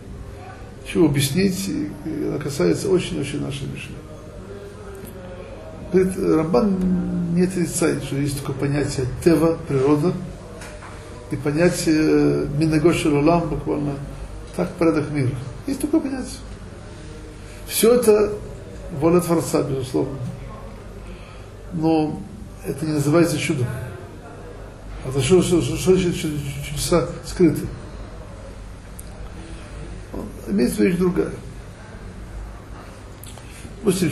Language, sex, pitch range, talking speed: Russian, male, 100-165 Hz, 85 wpm